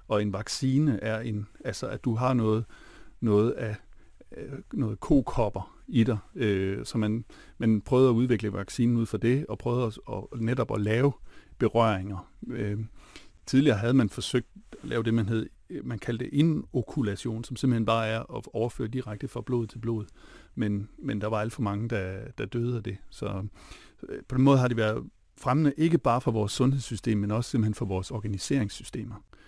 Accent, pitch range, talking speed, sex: native, 105-125 Hz, 185 wpm, male